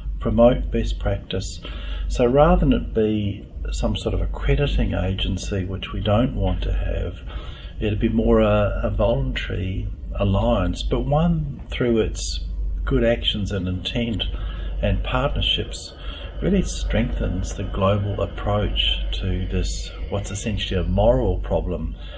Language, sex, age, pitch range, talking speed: English, male, 50-69, 85-110 Hz, 130 wpm